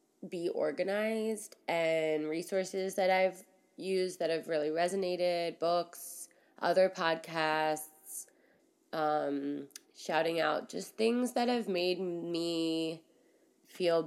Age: 20-39